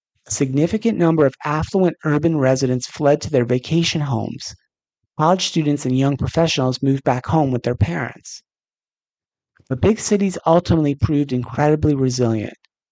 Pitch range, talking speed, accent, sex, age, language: 125-155 Hz, 140 wpm, American, male, 30-49, English